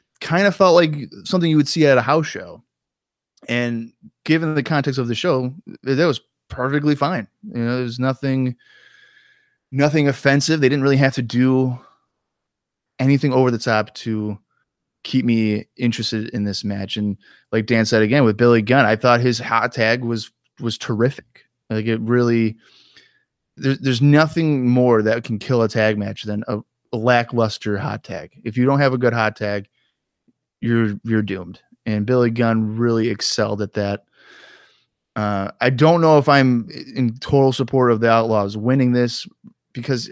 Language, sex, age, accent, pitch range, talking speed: English, male, 20-39, American, 110-135 Hz, 170 wpm